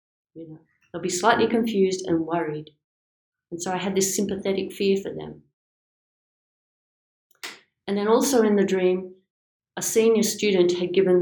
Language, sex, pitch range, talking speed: English, female, 160-190 Hz, 150 wpm